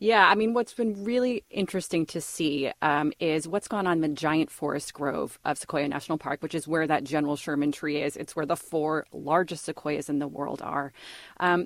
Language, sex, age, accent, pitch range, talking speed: English, female, 30-49, American, 150-195 Hz, 210 wpm